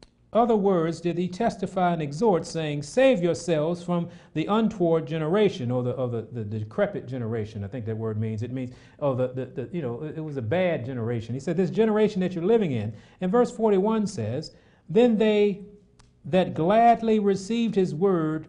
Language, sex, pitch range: English, male, 150-220 Hz